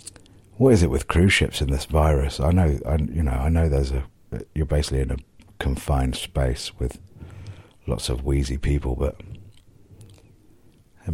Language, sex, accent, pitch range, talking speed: English, male, British, 70-95 Hz, 165 wpm